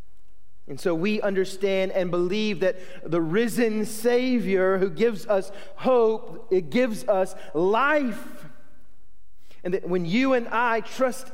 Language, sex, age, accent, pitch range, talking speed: English, male, 40-59, American, 185-250 Hz, 130 wpm